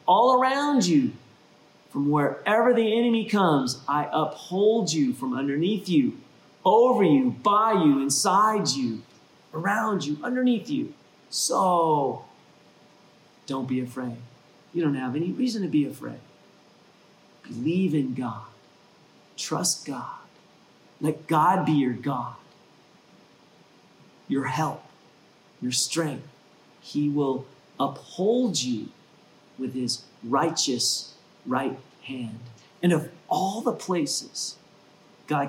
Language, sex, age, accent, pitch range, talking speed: English, male, 40-59, American, 130-200 Hz, 110 wpm